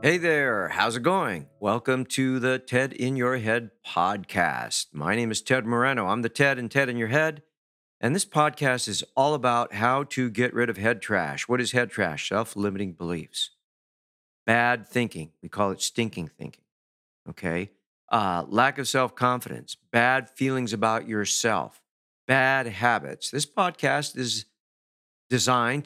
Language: English